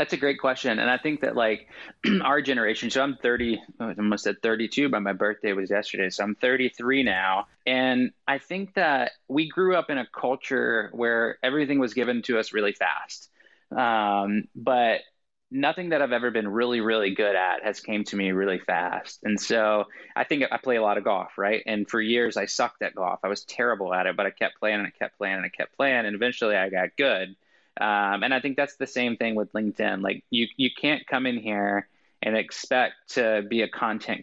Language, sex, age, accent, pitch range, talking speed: English, male, 20-39, American, 105-130 Hz, 220 wpm